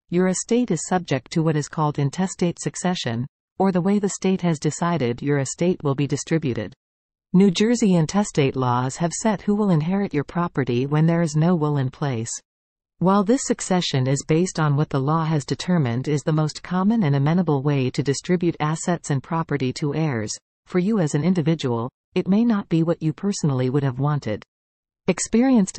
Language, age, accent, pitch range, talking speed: English, 40-59, American, 140-180 Hz, 190 wpm